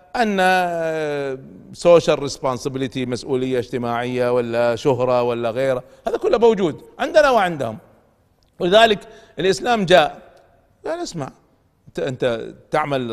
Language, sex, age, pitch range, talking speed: Arabic, male, 50-69, 125-180 Hz, 95 wpm